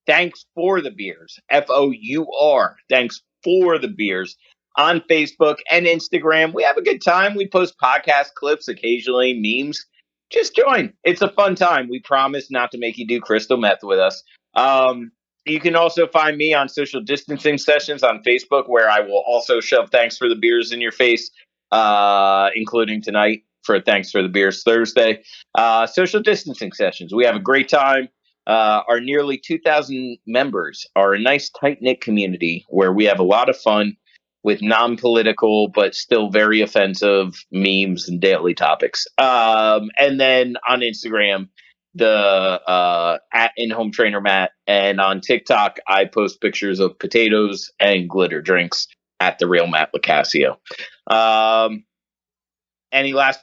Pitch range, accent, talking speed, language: 100-150 Hz, American, 155 wpm, English